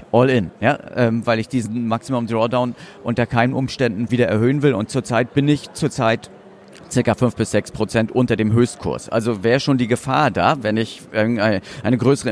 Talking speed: 185 wpm